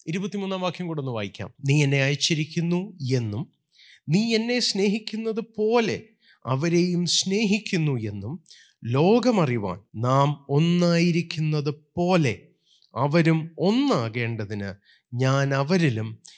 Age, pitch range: 30-49, 135-205 Hz